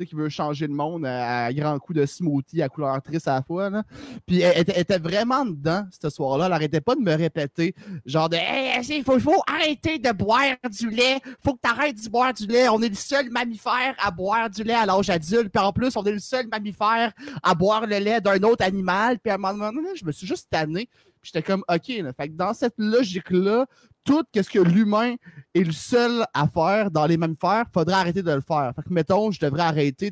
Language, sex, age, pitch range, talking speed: French, male, 30-49, 170-245 Hz, 255 wpm